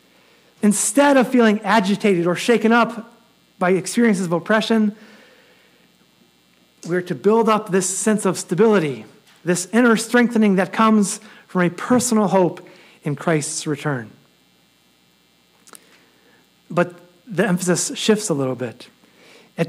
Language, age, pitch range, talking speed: English, 40-59, 180-230 Hz, 120 wpm